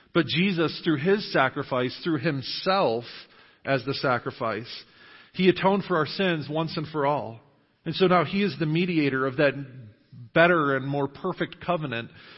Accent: American